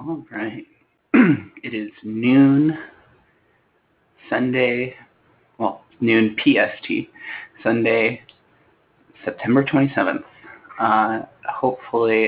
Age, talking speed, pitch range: 20-39, 70 wpm, 110-140 Hz